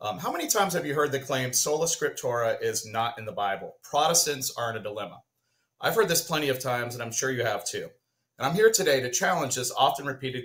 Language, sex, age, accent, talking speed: English, male, 30-49, American, 240 wpm